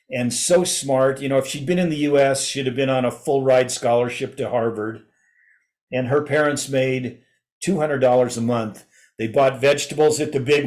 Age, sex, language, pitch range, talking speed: 50-69, male, English, 125-145 Hz, 200 wpm